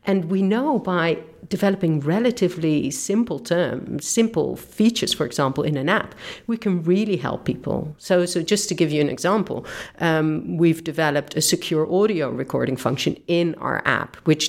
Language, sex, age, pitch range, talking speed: English, female, 50-69, 145-175 Hz, 165 wpm